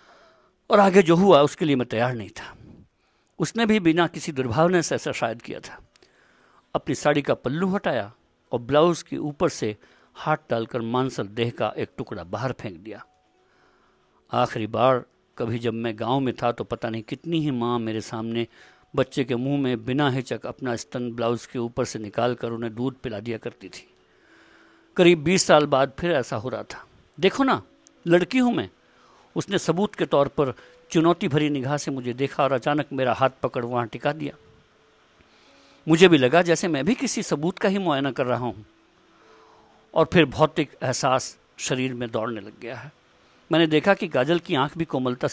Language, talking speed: Hindi, 185 wpm